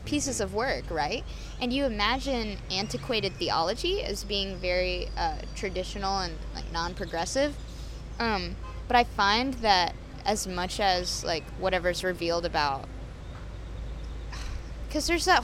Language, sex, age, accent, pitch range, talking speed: English, female, 20-39, American, 170-220 Hz, 125 wpm